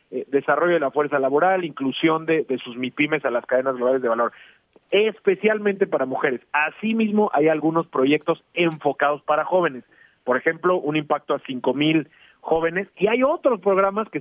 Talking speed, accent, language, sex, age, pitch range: 160 wpm, Mexican, Spanish, male, 40-59, 130-180 Hz